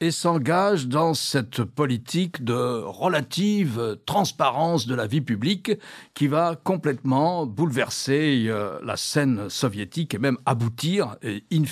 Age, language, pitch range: 60-79, French, 135-190 Hz